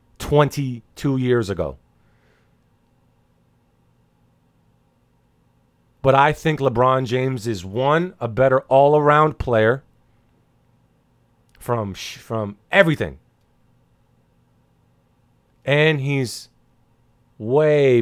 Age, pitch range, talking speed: 30-49, 110-140 Hz, 70 wpm